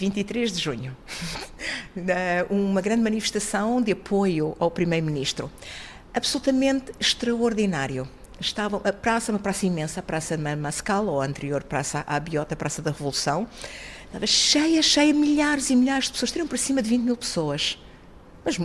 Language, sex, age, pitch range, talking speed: Portuguese, female, 50-69, 160-245 Hz, 155 wpm